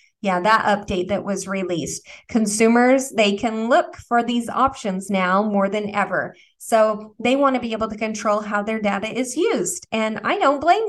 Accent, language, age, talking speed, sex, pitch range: American, English, 30-49, 185 wpm, female, 200-235 Hz